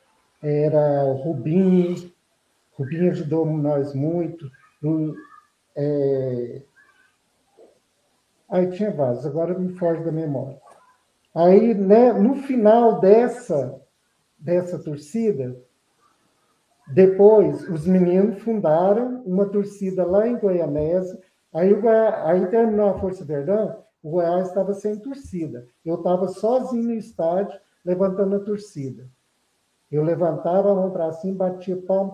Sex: male